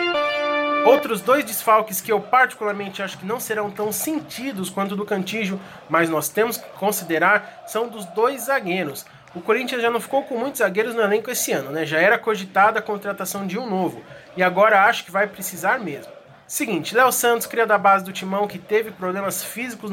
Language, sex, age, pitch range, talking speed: Portuguese, male, 20-39, 190-225 Hz, 195 wpm